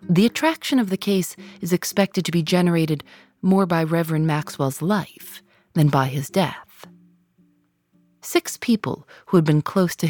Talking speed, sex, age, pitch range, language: 155 wpm, female, 40-59, 145-195 Hz, English